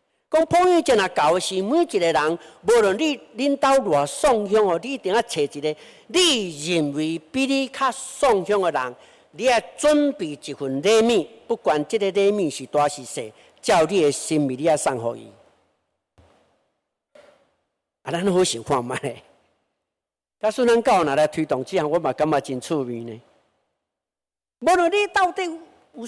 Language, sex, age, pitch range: Chinese, male, 60-79, 135-225 Hz